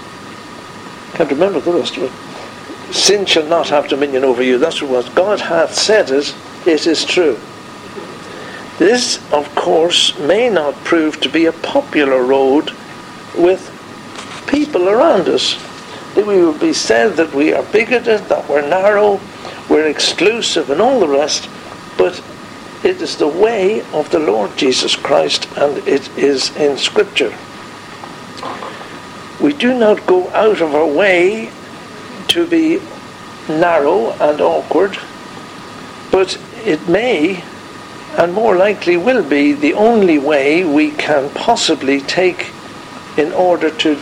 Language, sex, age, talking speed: English, male, 60-79, 140 wpm